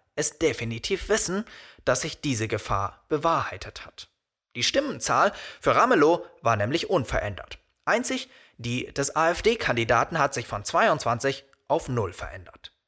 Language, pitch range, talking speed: German, 115-170 Hz, 125 wpm